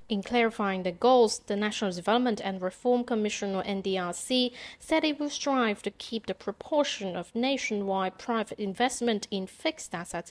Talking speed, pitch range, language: 155 wpm, 195-250 Hz, English